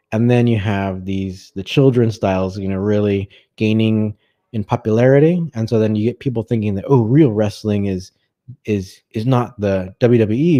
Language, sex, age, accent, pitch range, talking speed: English, male, 20-39, American, 95-115 Hz, 175 wpm